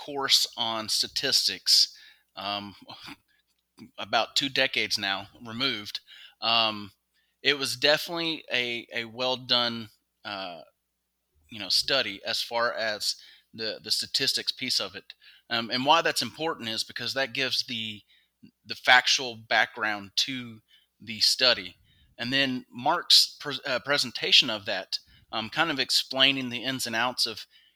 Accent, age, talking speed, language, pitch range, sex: American, 30-49, 135 wpm, English, 110-130 Hz, male